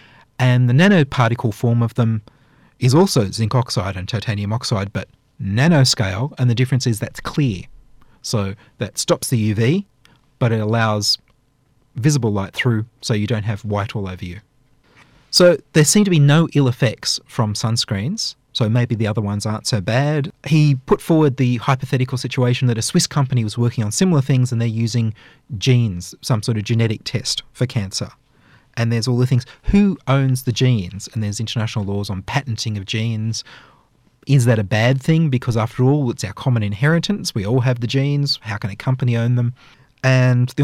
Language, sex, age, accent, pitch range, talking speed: English, male, 30-49, Australian, 110-135 Hz, 185 wpm